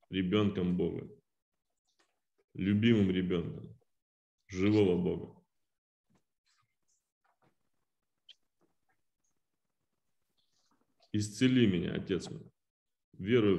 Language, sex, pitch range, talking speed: Russian, male, 100-115 Hz, 50 wpm